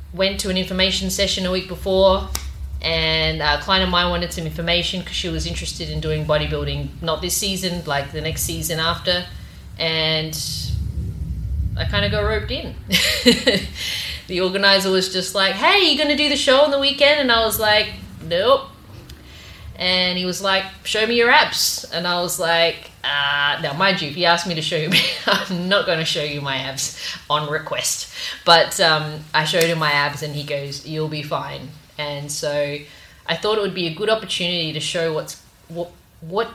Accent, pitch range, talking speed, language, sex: Australian, 145-190 Hz, 195 wpm, English, female